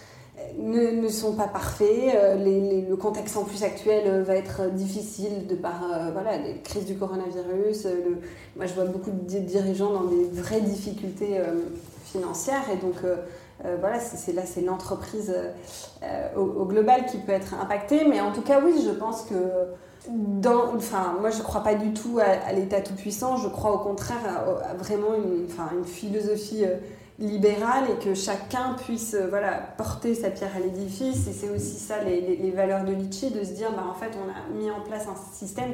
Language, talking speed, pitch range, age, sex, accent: French, 205 wpm, 190-215 Hz, 20-39, female, French